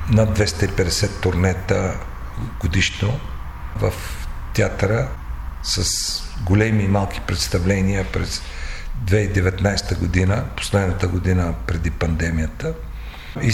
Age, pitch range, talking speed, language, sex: 50-69, 85-110 Hz, 85 wpm, Bulgarian, male